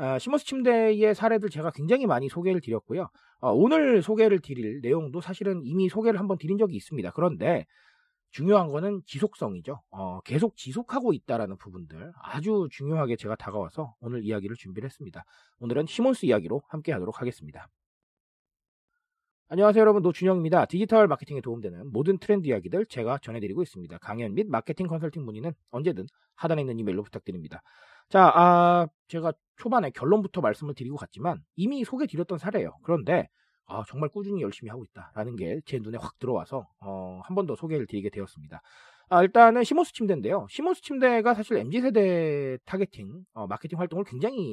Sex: male